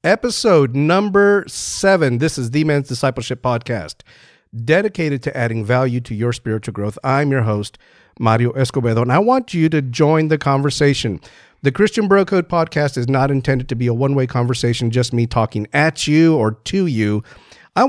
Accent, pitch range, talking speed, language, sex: American, 120-155 Hz, 175 wpm, English, male